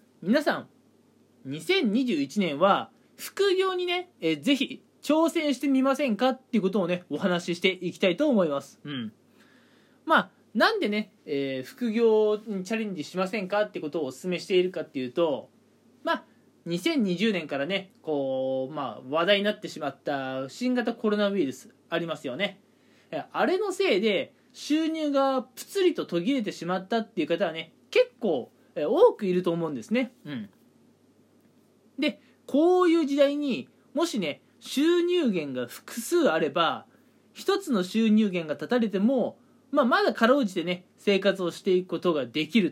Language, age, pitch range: Japanese, 20-39, 180-275 Hz